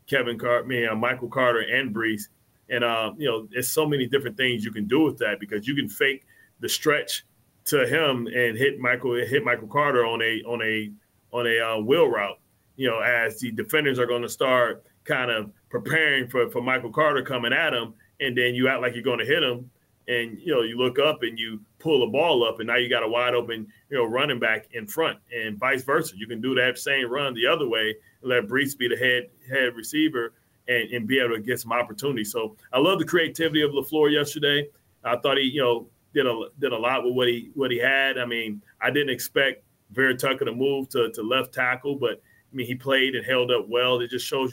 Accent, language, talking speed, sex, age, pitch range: American, English, 235 wpm, male, 30-49, 115-135 Hz